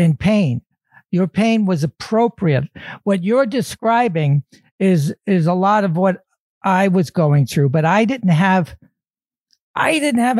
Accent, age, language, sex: American, 60-79, English, male